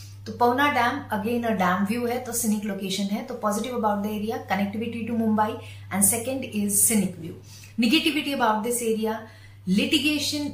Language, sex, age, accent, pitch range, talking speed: Hindi, female, 30-49, native, 175-235 Hz, 175 wpm